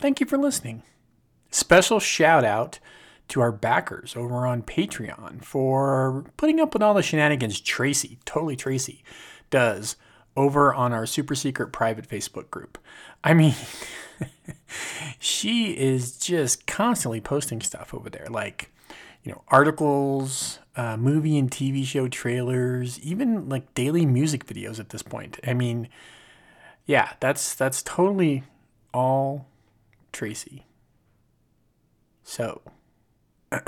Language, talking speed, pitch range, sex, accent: English, 125 wpm, 125-160 Hz, male, American